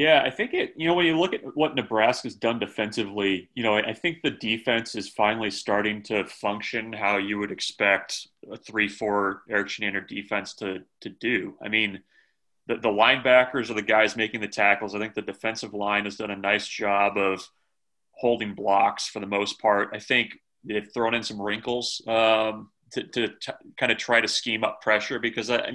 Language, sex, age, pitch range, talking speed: English, male, 30-49, 105-115 Hz, 200 wpm